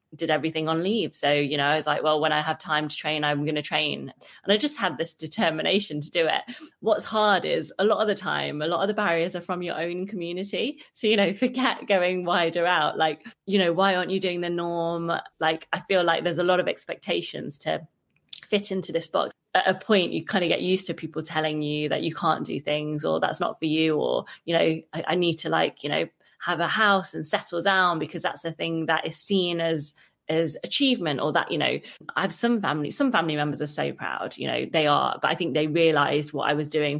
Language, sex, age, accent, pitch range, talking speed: English, female, 20-39, British, 155-190 Hz, 245 wpm